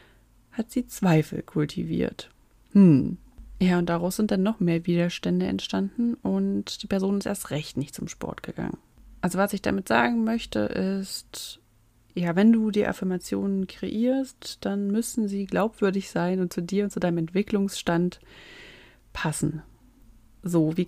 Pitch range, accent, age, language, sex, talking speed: 165-200 Hz, German, 30-49, German, female, 150 wpm